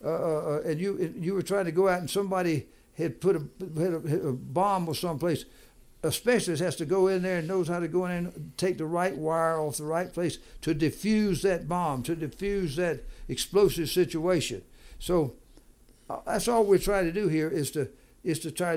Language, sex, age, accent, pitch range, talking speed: English, male, 60-79, American, 155-185 Hz, 215 wpm